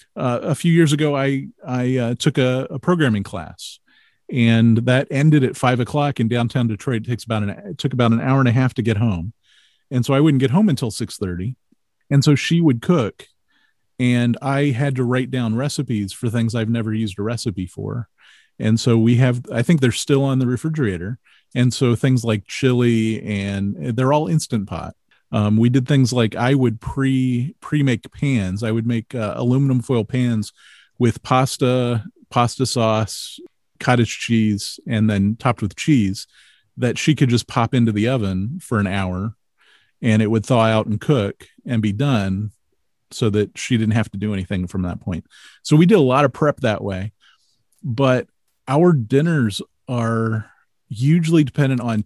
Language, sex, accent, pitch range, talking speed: English, male, American, 110-135 Hz, 185 wpm